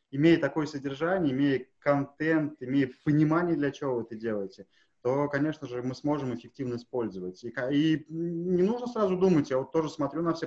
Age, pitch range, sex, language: 20-39, 125-160 Hz, male, Russian